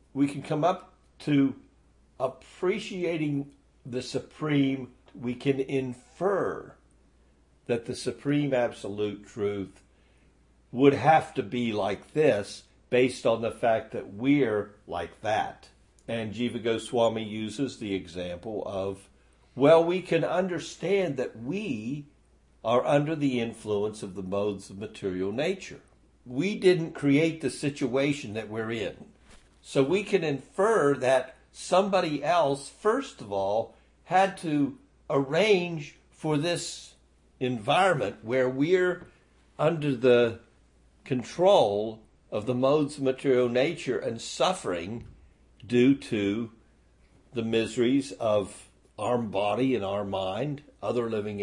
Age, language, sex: 60-79, English, male